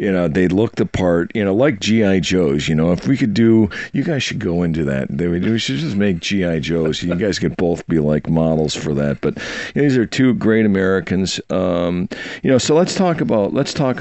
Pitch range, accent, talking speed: 85-110 Hz, American, 245 wpm